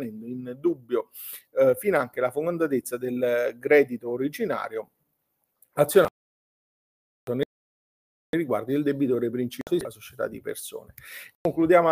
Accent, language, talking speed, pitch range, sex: native, Italian, 105 wpm, 135-185 Hz, male